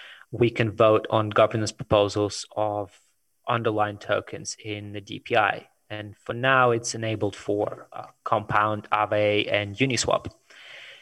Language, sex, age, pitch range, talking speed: English, male, 30-49, 105-120 Hz, 125 wpm